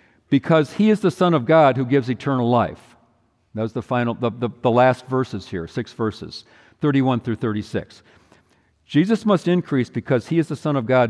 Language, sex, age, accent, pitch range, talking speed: English, male, 50-69, American, 120-175 Hz, 185 wpm